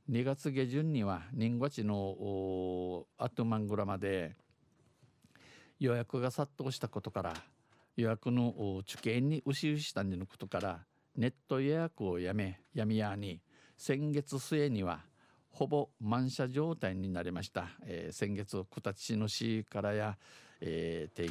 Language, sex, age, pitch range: Japanese, male, 50-69, 100-125 Hz